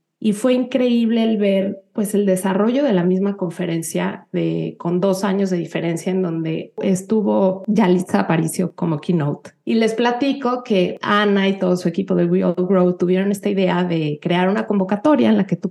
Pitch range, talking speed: 180-225 Hz, 185 wpm